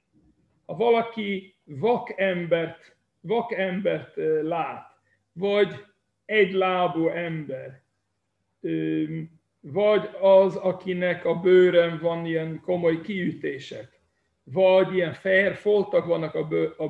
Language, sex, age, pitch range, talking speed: Hungarian, male, 60-79, 160-200 Hz, 90 wpm